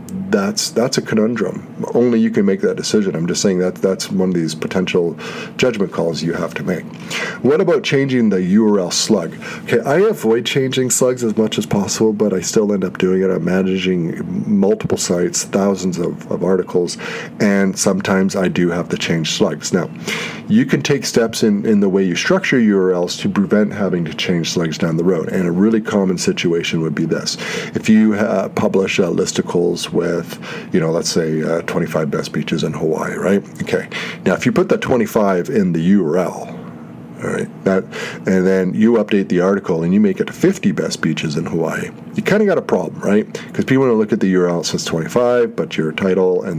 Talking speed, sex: 205 wpm, male